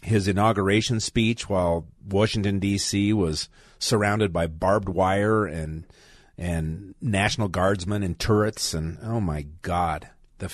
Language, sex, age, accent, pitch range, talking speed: English, male, 40-59, American, 95-115 Hz, 125 wpm